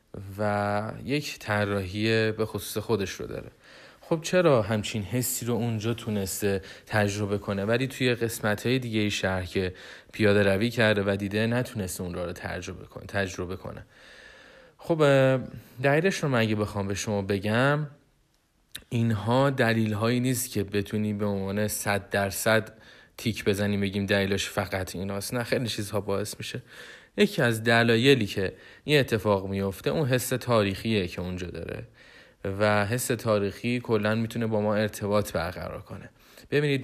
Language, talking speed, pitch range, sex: Persian, 140 wpm, 100-115 Hz, male